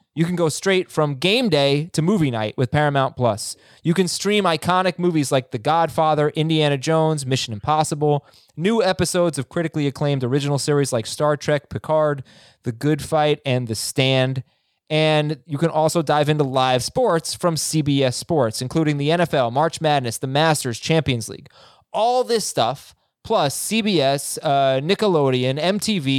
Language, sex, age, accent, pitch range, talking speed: English, male, 20-39, American, 130-165 Hz, 160 wpm